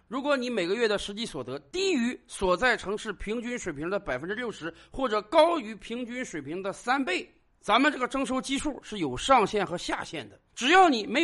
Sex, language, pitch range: male, Chinese, 175-265 Hz